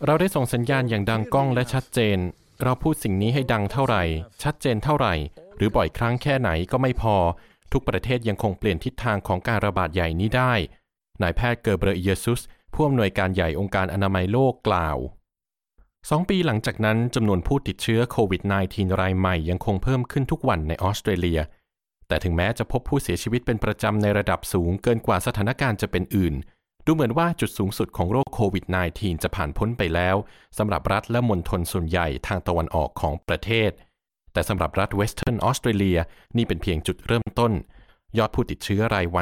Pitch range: 90-120 Hz